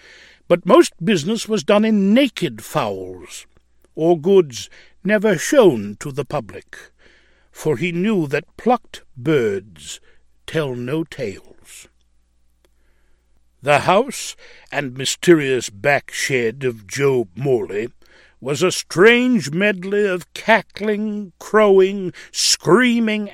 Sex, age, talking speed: male, 60-79, 105 wpm